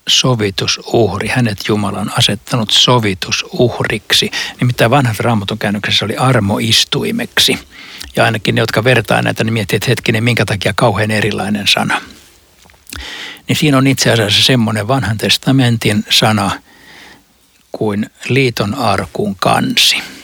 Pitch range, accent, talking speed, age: 105-120 Hz, native, 115 wpm, 60-79